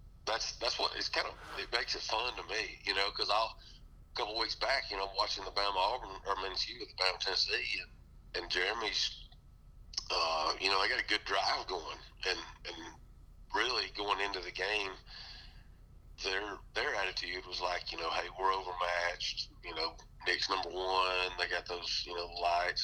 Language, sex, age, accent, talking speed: English, male, 40-59, American, 195 wpm